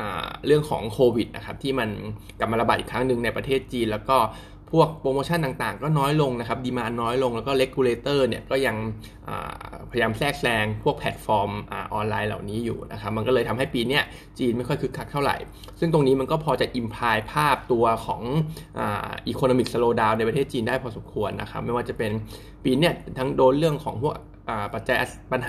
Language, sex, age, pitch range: Thai, male, 20-39, 110-135 Hz